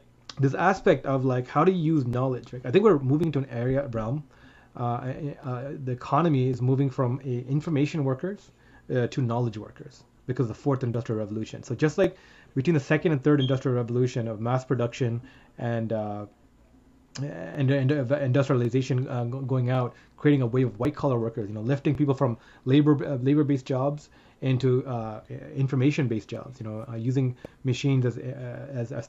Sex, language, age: male, English, 30-49